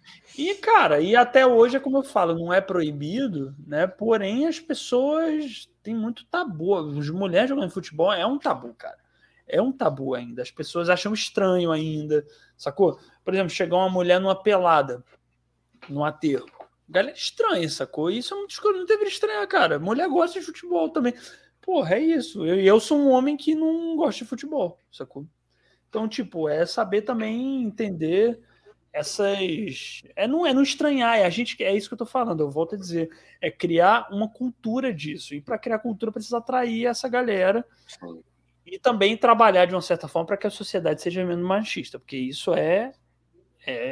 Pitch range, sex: 165-255 Hz, male